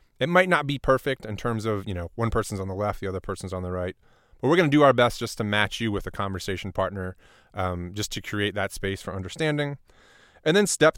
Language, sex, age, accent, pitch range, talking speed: English, male, 30-49, American, 105-145 Hz, 255 wpm